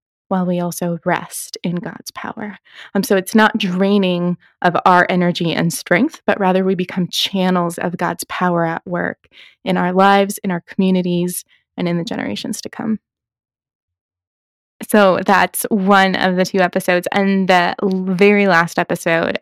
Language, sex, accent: English, female, American